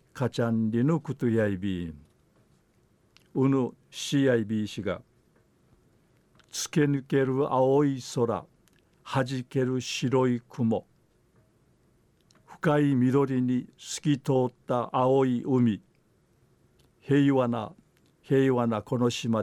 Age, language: 50-69, Japanese